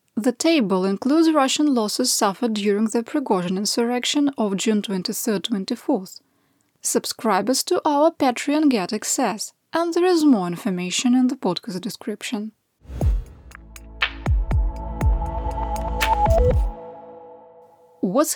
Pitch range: 195-275 Hz